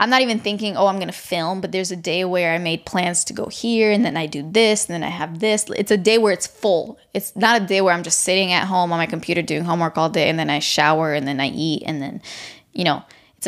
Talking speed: 295 wpm